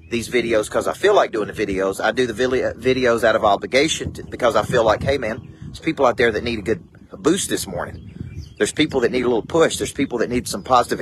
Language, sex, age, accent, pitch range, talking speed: English, male, 40-59, American, 90-120 Hz, 250 wpm